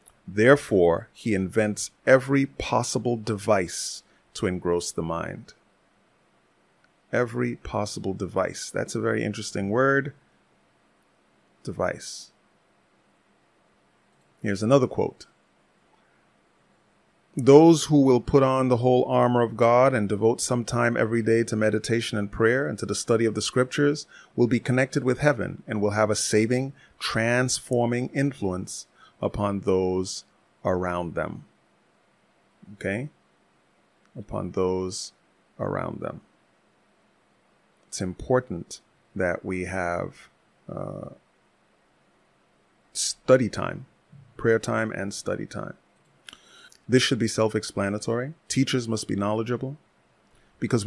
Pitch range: 100-125 Hz